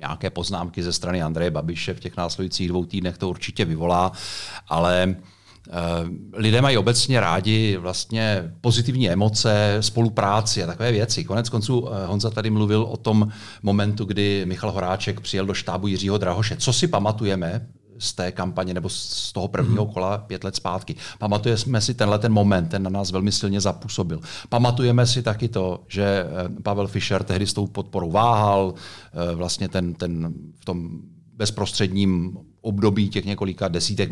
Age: 40-59